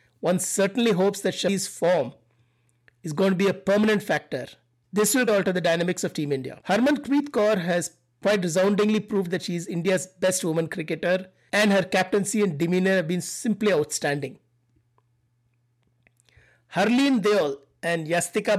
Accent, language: Indian, English